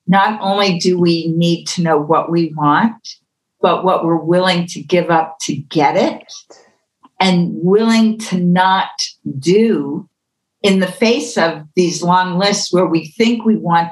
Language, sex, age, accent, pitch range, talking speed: English, female, 50-69, American, 155-195 Hz, 160 wpm